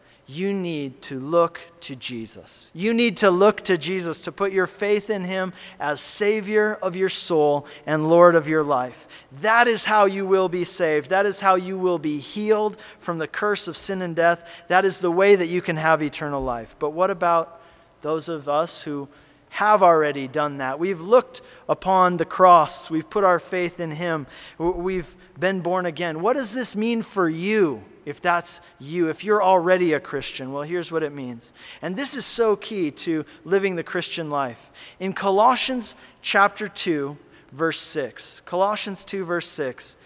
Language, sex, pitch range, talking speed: English, male, 155-195 Hz, 185 wpm